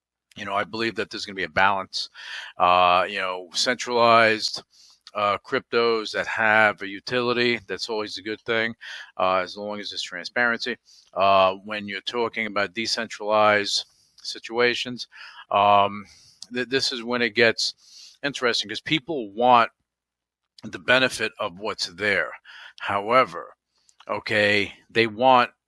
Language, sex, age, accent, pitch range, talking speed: English, male, 50-69, American, 105-125 Hz, 140 wpm